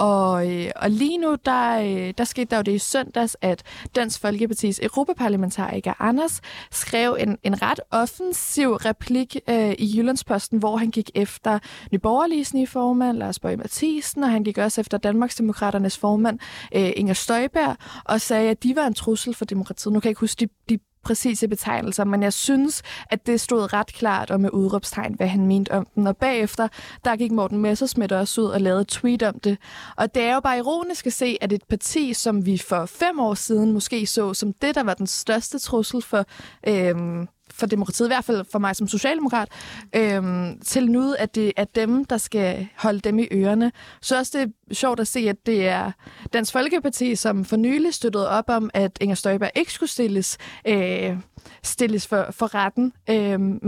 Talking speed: 195 wpm